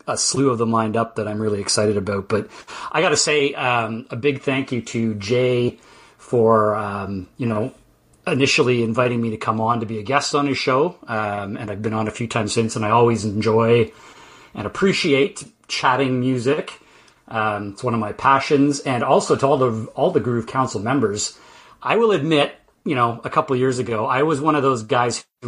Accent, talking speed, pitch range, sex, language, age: American, 210 wpm, 115-140 Hz, male, English, 30-49